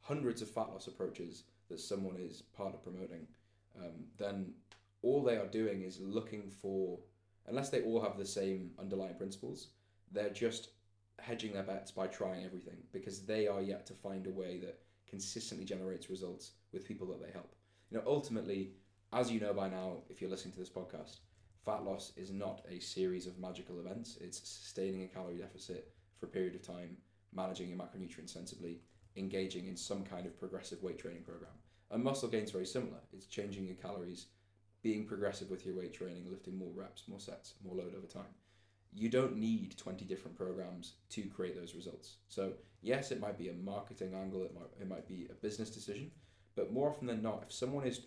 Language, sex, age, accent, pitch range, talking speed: English, male, 20-39, British, 95-110 Hz, 195 wpm